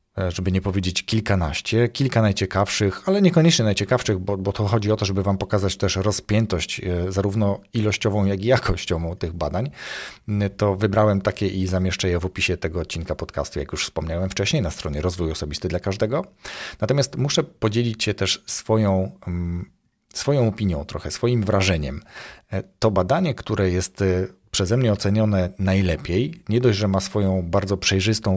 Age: 40-59